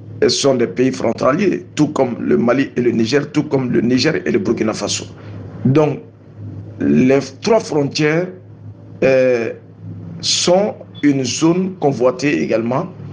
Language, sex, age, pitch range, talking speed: French, male, 50-69, 115-145 Hz, 135 wpm